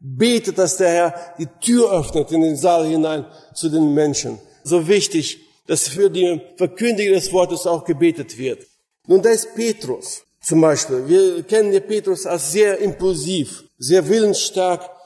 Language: German